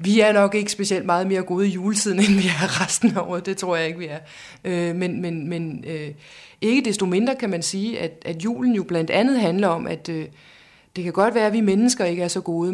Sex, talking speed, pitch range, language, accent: female, 235 wpm, 165-200 Hz, Danish, native